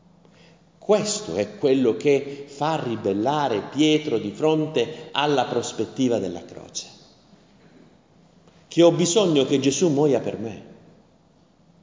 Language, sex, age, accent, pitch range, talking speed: Italian, male, 50-69, native, 115-165 Hz, 105 wpm